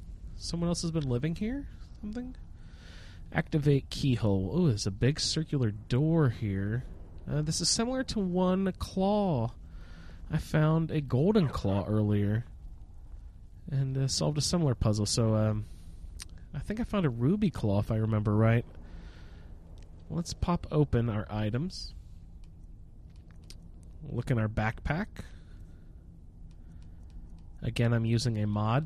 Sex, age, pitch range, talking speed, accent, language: male, 30-49, 85-125 Hz, 130 wpm, American, English